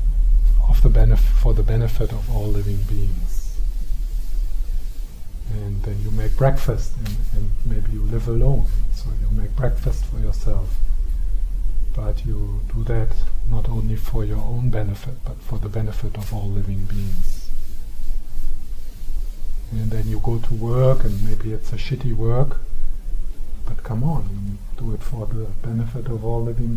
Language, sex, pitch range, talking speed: English, male, 90-115 Hz, 145 wpm